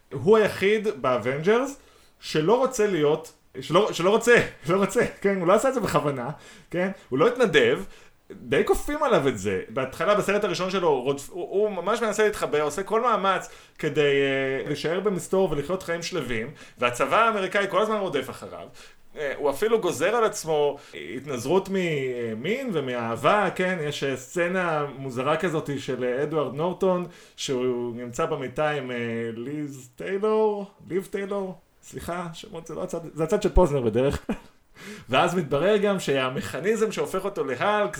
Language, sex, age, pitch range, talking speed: Hebrew, male, 30-49, 145-210 Hz, 145 wpm